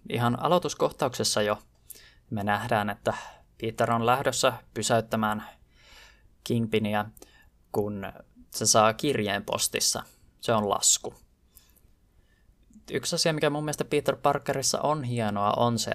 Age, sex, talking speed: 20-39, male, 115 wpm